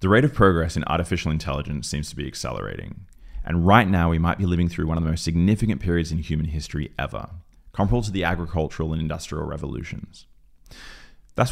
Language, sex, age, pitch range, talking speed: English, male, 20-39, 80-105 Hz, 195 wpm